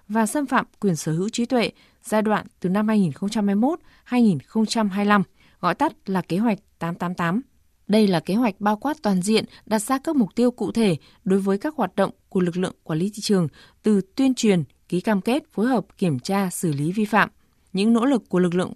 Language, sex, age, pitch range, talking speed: Vietnamese, female, 20-39, 180-230 Hz, 210 wpm